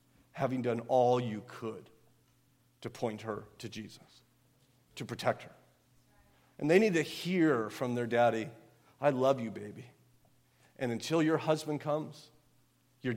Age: 40-59